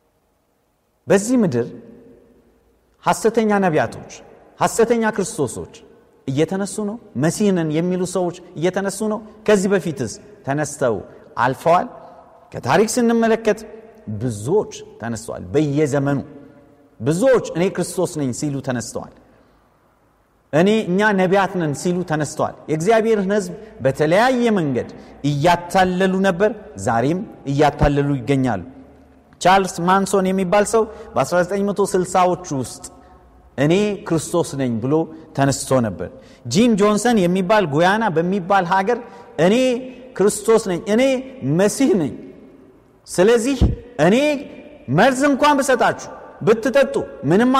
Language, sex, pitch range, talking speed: Amharic, male, 150-220 Hz, 90 wpm